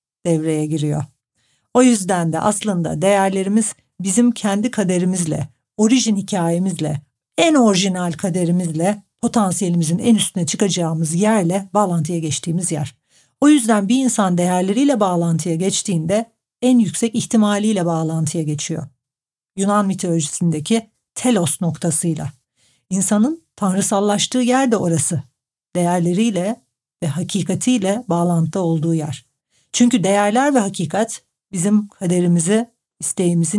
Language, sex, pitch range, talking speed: Turkish, female, 165-210 Hz, 100 wpm